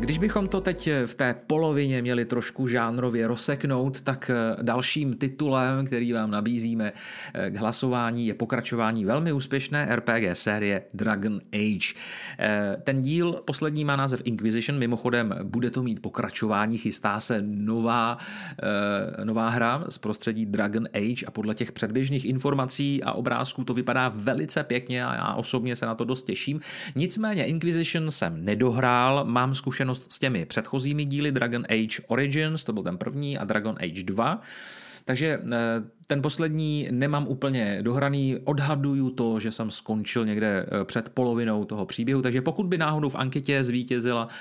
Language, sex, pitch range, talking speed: Czech, male, 110-140 Hz, 150 wpm